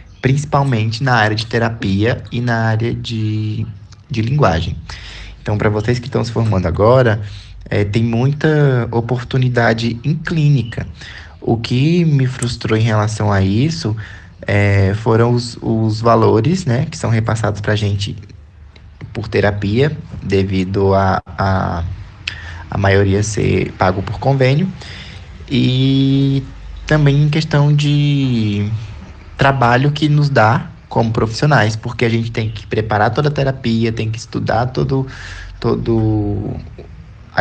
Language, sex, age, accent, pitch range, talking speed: Portuguese, male, 20-39, Brazilian, 100-130 Hz, 130 wpm